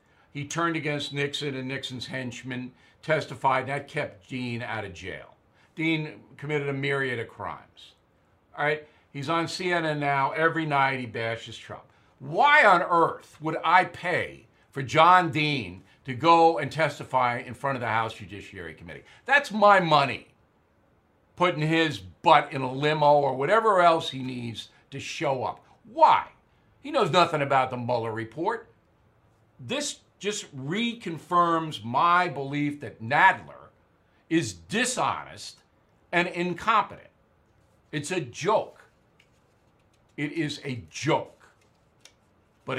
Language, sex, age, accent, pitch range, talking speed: English, male, 50-69, American, 120-165 Hz, 135 wpm